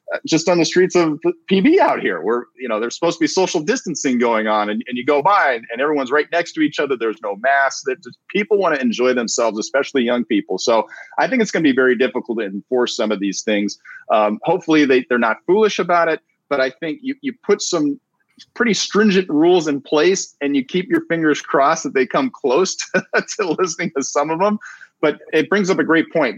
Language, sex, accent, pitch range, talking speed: English, male, American, 120-180 Hz, 230 wpm